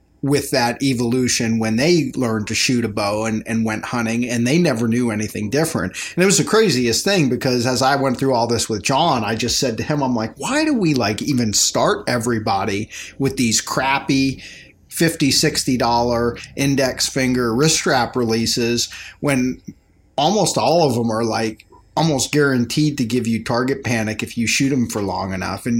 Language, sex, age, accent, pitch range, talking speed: English, male, 30-49, American, 115-135 Hz, 190 wpm